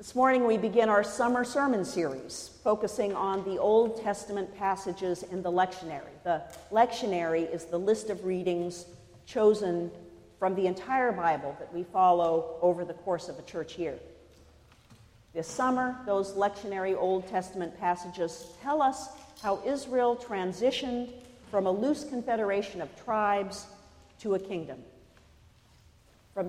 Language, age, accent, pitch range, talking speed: English, 50-69, American, 175-235 Hz, 140 wpm